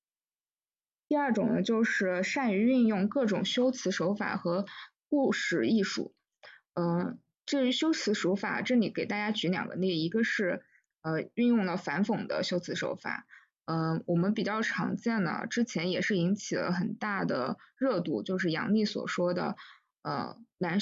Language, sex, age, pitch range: Chinese, female, 20-39, 180-235 Hz